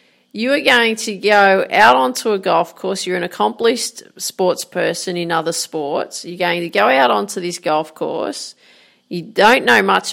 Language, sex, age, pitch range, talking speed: English, female, 40-59, 170-210 Hz, 185 wpm